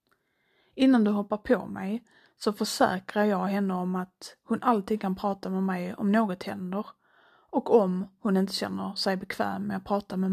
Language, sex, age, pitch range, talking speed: Swedish, female, 30-49, 195-240 Hz, 180 wpm